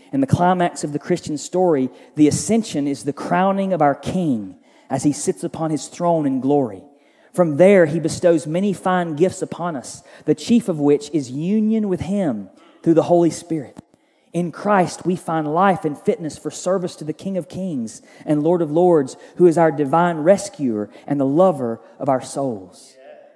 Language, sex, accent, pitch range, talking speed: English, male, American, 155-190 Hz, 190 wpm